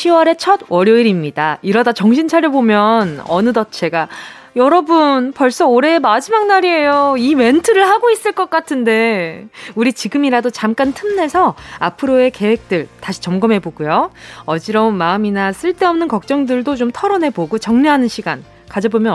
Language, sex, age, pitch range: Korean, female, 20-39, 200-300 Hz